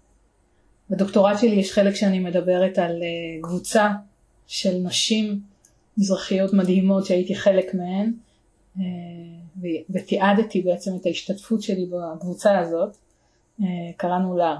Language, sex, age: Hebrew, female, 30-49